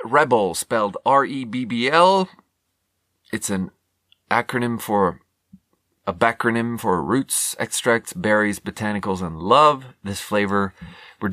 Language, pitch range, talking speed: English, 95-125 Hz, 120 wpm